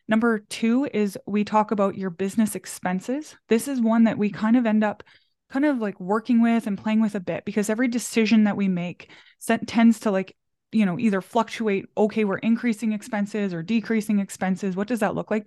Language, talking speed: English, 205 wpm